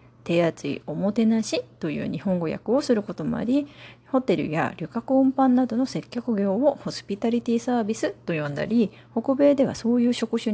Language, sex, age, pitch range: Japanese, female, 30-49, 175-265 Hz